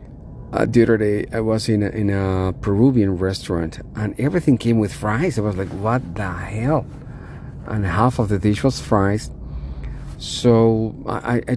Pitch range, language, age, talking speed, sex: 90-115 Hz, English, 40-59, 170 wpm, male